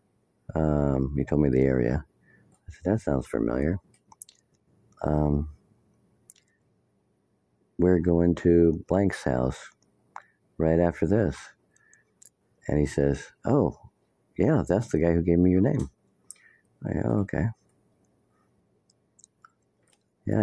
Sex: male